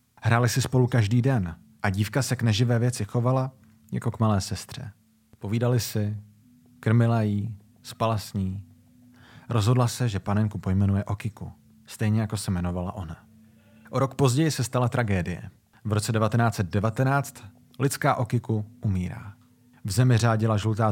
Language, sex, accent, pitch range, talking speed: Czech, male, native, 105-125 Hz, 145 wpm